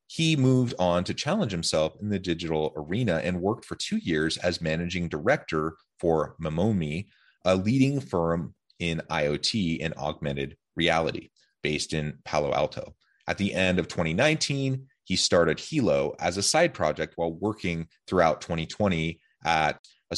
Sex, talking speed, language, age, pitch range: male, 150 wpm, English, 30-49, 80-105 Hz